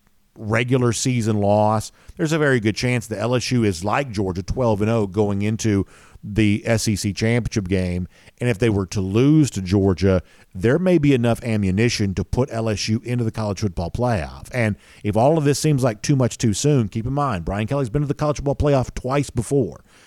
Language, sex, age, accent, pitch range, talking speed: English, male, 50-69, American, 100-130 Hz, 195 wpm